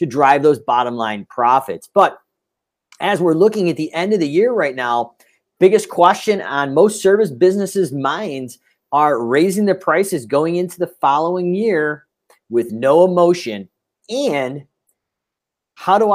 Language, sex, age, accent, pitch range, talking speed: English, male, 40-59, American, 125-175 Hz, 150 wpm